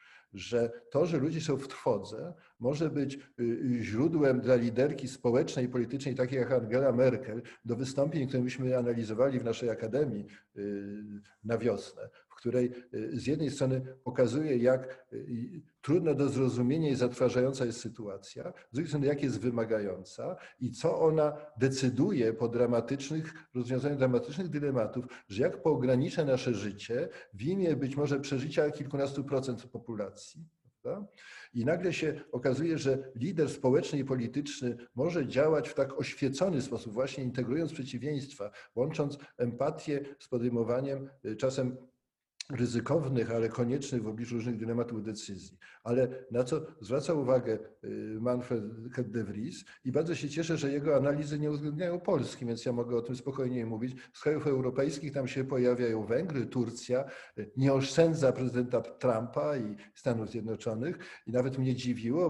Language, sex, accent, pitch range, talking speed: Polish, male, native, 120-140 Hz, 145 wpm